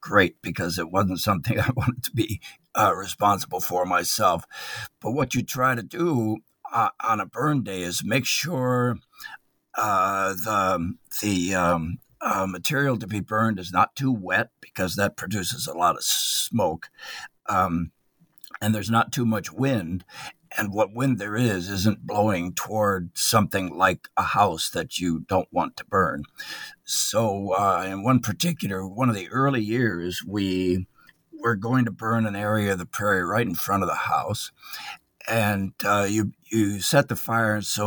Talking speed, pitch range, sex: 170 wpm, 95-120 Hz, male